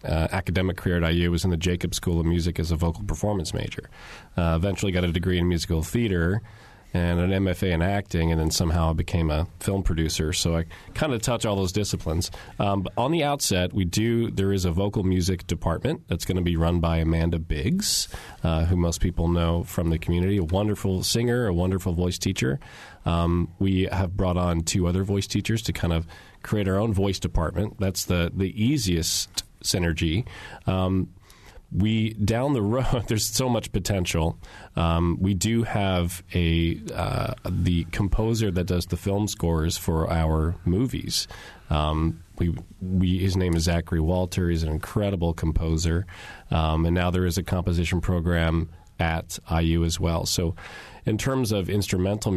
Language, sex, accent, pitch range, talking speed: English, male, American, 85-100 Hz, 180 wpm